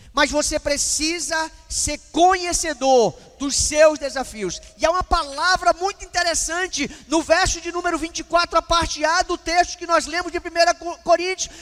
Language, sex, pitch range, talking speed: Portuguese, male, 300-370 Hz, 155 wpm